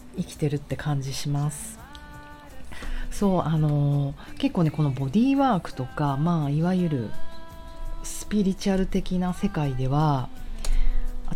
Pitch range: 135-195 Hz